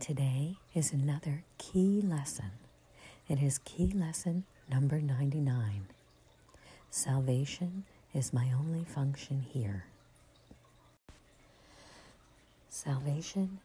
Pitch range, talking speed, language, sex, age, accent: 135-175 Hz, 80 wpm, English, female, 50-69, American